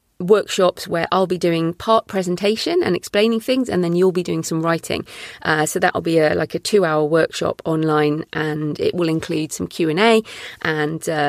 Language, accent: English, British